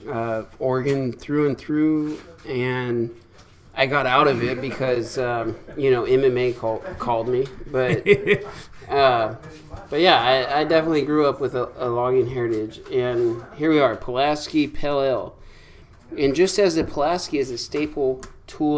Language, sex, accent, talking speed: English, male, American, 155 wpm